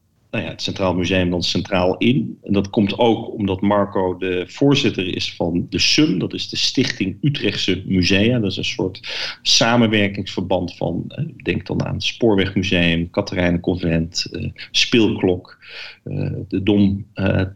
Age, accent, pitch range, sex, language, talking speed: 40-59, Dutch, 95-115 Hz, male, Dutch, 150 wpm